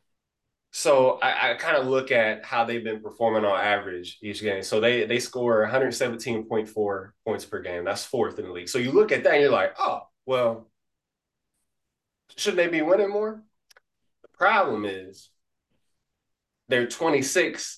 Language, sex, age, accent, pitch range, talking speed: English, male, 20-39, American, 105-130 Hz, 160 wpm